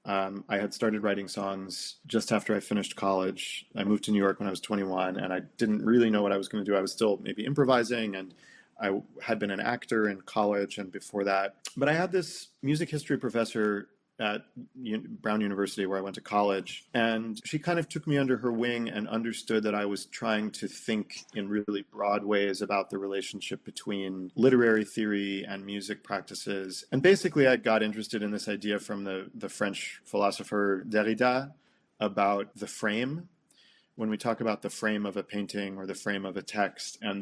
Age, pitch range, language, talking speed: 40-59, 100-115 Hz, English, 200 wpm